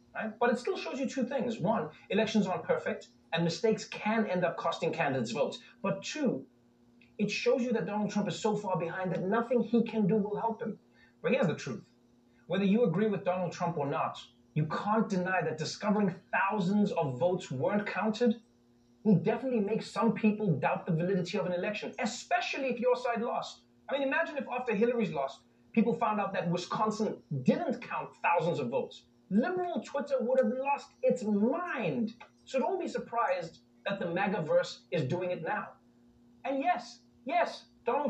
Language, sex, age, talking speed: Spanish, male, 30-49, 185 wpm